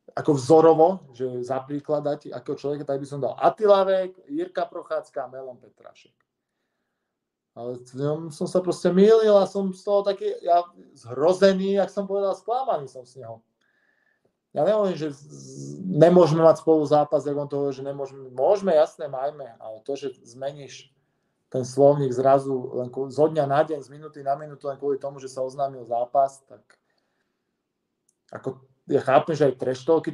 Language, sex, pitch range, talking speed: Czech, male, 130-165 Hz, 160 wpm